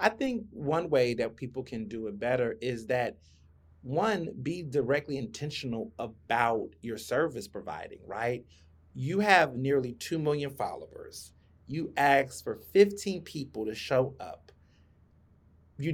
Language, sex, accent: English, male, American